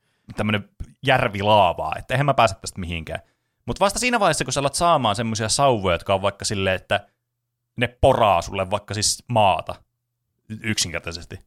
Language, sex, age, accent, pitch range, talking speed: Finnish, male, 30-49, native, 100-140 Hz, 155 wpm